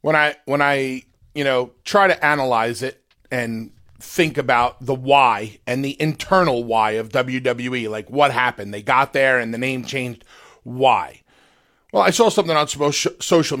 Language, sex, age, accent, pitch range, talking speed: English, male, 40-59, American, 125-155 Hz, 170 wpm